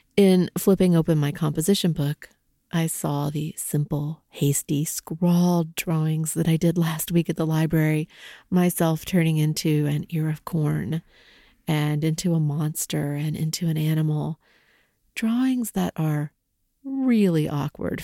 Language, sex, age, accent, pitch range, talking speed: English, female, 40-59, American, 155-195 Hz, 135 wpm